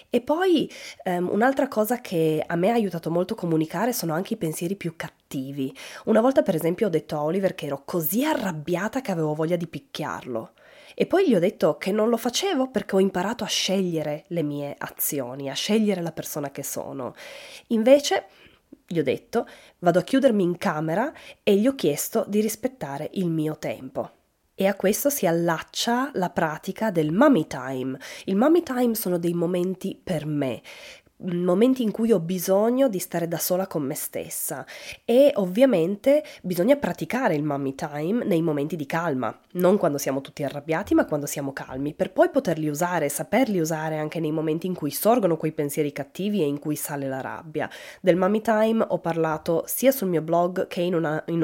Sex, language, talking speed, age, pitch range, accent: female, Italian, 185 wpm, 20-39, 155-220 Hz, native